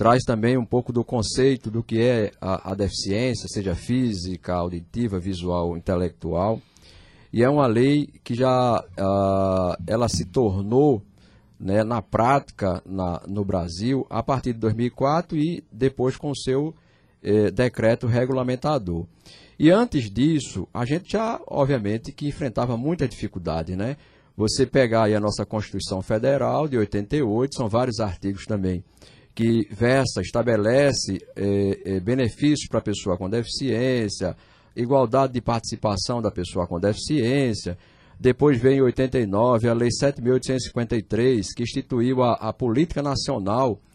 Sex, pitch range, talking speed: male, 100-130 Hz, 130 wpm